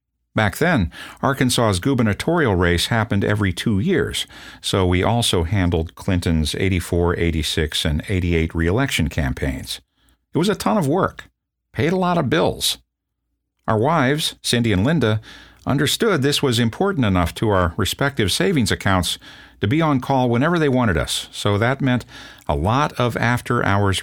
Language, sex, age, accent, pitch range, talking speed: English, male, 50-69, American, 85-120 Hz, 150 wpm